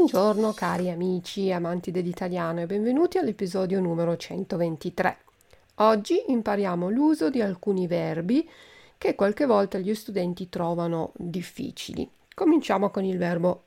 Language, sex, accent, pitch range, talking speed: Italian, female, native, 180-235 Hz, 120 wpm